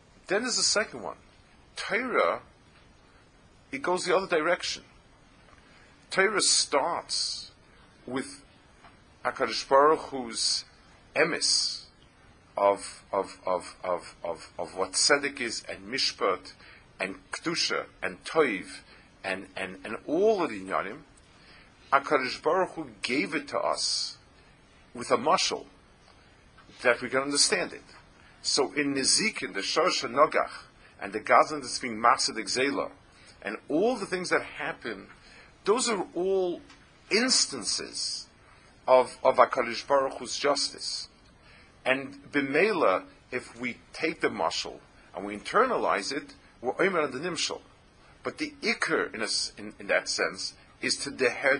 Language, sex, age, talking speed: English, male, 50-69, 120 wpm